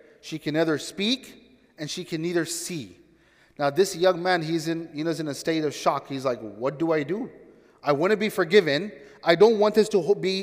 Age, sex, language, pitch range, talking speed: 30-49, male, English, 160-215 Hz, 220 wpm